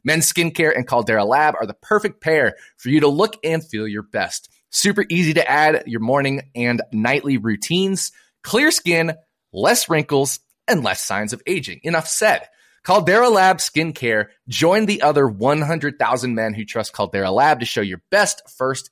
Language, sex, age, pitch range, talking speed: English, male, 20-39, 115-165 Hz, 170 wpm